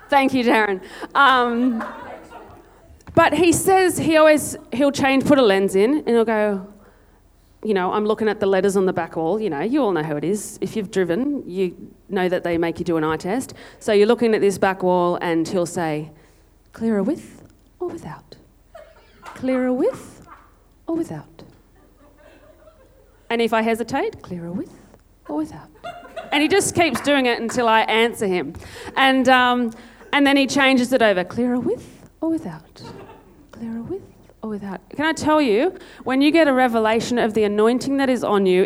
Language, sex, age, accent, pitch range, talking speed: English, female, 40-59, Australian, 210-285 Hz, 185 wpm